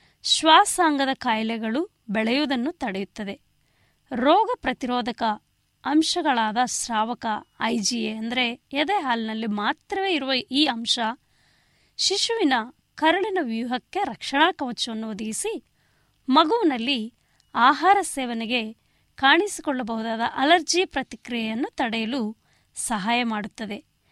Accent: native